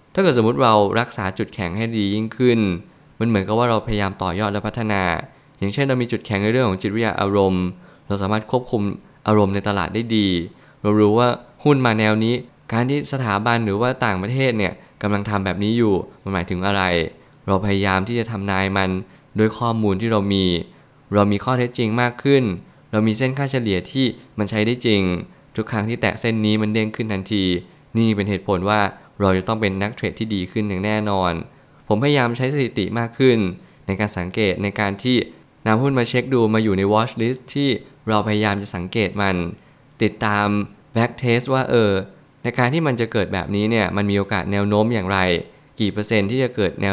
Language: Thai